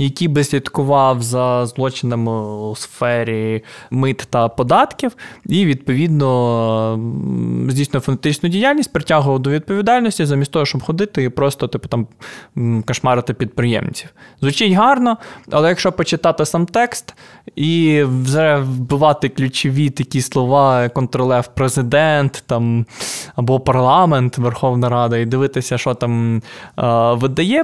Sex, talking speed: male, 115 wpm